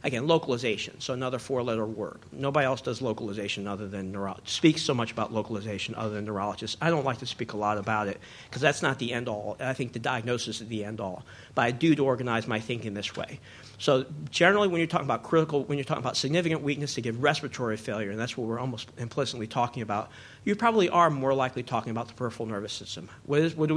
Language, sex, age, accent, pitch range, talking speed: English, male, 50-69, American, 115-145 Hz, 230 wpm